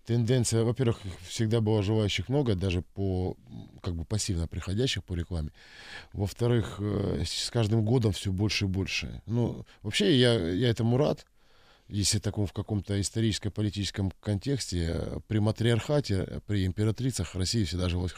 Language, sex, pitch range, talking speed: Russian, male, 90-120 Hz, 130 wpm